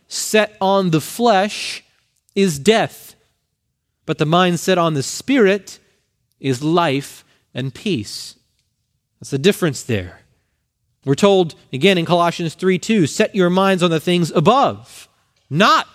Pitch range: 140-195 Hz